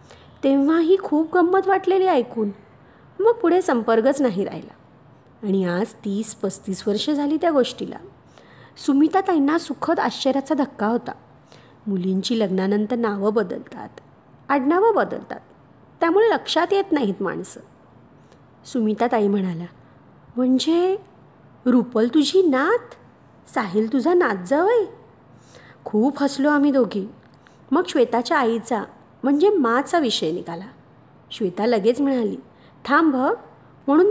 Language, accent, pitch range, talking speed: Marathi, native, 220-325 Hz, 110 wpm